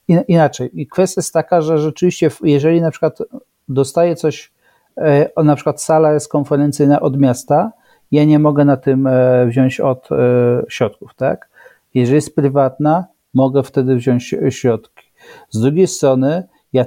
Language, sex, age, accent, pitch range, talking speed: Polish, male, 40-59, native, 130-150 Hz, 140 wpm